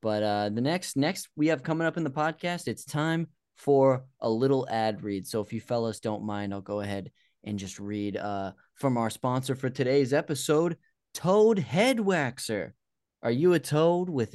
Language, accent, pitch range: English, American, 110-160 Hz